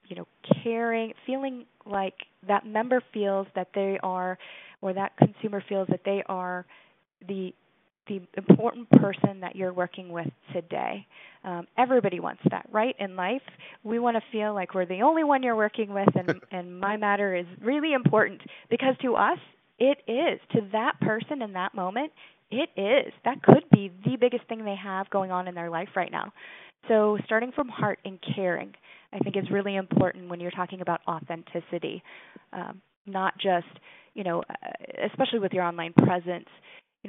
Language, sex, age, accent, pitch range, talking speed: English, female, 20-39, American, 180-225 Hz, 175 wpm